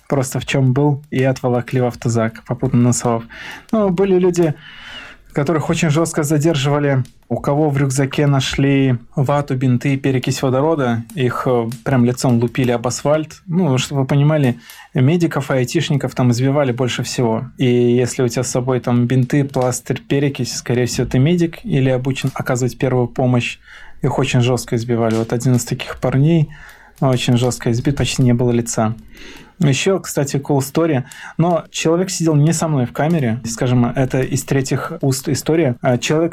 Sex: male